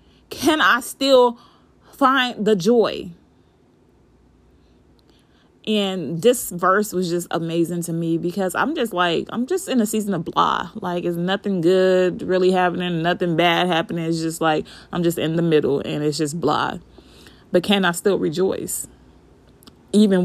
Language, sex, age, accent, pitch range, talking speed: English, female, 20-39, American, 175-225 Hz, 155 wpm